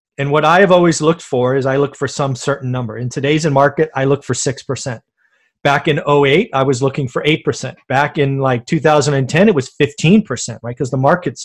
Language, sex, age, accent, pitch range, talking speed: English, male, 30-49, American, 140-170 Hz, 210 wpm